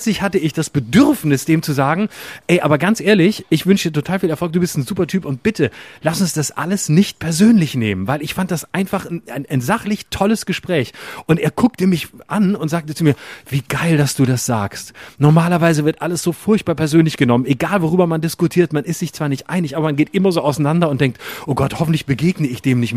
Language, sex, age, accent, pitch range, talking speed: German, male, 30-49, German, 140-190 Hz, 235 wpm